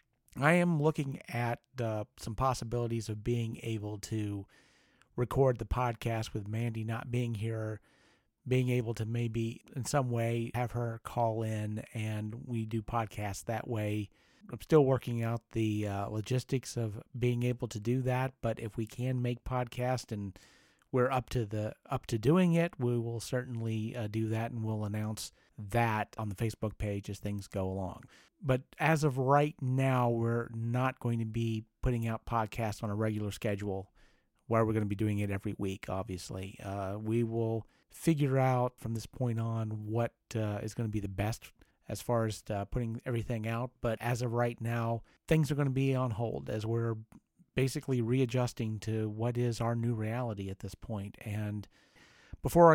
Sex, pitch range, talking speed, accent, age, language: male, 110-125 Hz, 180 wpm, American, 40-59, English